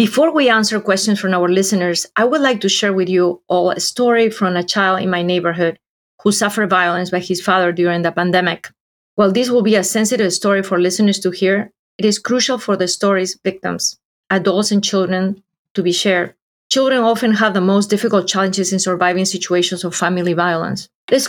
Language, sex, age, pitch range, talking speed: English, female, 30-49, 180-210 Hz, 195 wpm